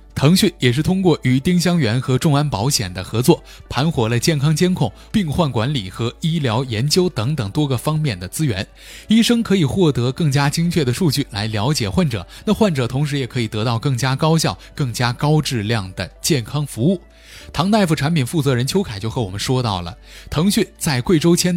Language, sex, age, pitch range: Chinese, male, 20-39, 120-165 Hz